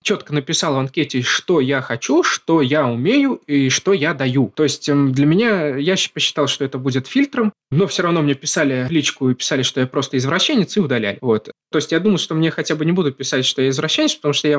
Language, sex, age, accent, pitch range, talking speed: Russian, male, 20-39, native, 135-180 Hz, 240 wpm